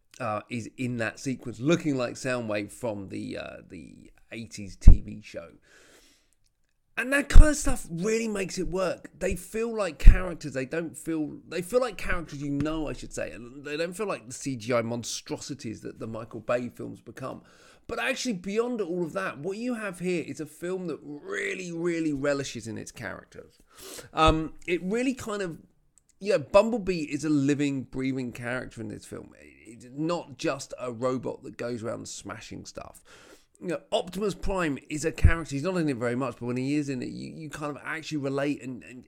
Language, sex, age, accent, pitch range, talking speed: English, male, 30-49, British, 120-170 Hz, 195 wpm